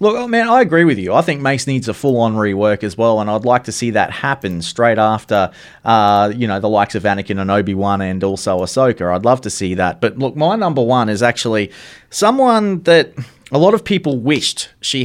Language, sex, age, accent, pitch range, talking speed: English, male, 30-49, Australian, 110-140 Hz, 225 wpm